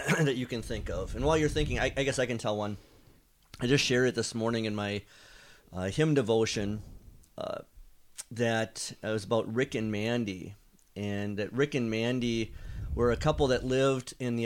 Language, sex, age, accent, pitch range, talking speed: English, male, 40-59, American, 105-120 Hz, 195 wpm